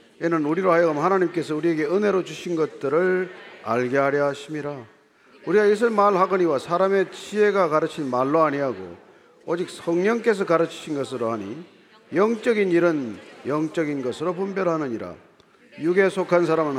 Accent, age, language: native, 40-59, Korean